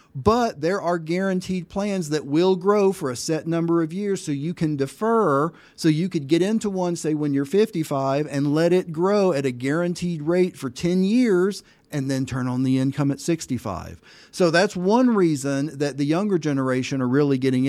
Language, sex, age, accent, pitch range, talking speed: English, male, 40-59, American, 135-180 Hz, 195 wpm